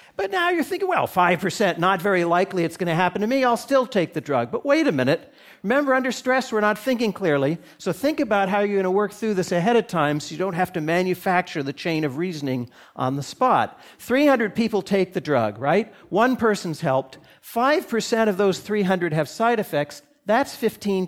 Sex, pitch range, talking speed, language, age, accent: male, 160-230 Hz, 215 wpm, English, 50-69, American